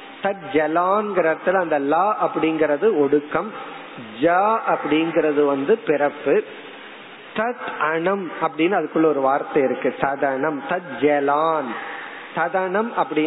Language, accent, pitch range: Tamil, native, 150-210 Hz